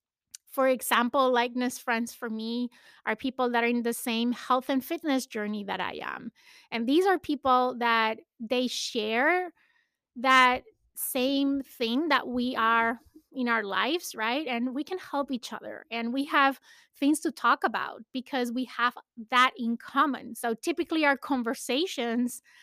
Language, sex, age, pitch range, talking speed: English, female, 20-39, 230-280 Hz, 160 wpm